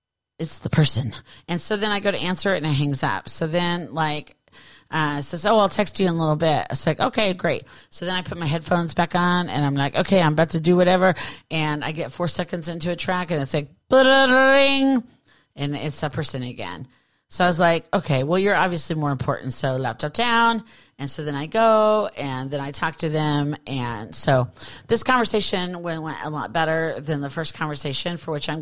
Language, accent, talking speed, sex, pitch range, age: English, American, 220 wpm, female, 145-180 Hz, 40-59